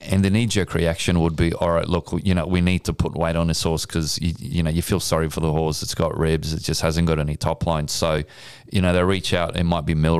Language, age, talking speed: English, 30-49, 295 wpm